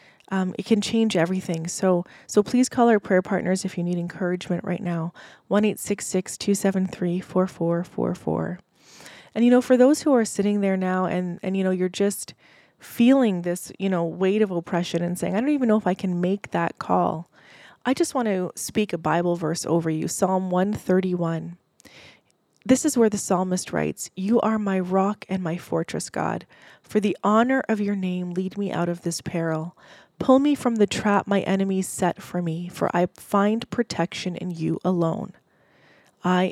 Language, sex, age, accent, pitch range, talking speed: English, female, 20-39, American, 175-205 Hz, 185 wpm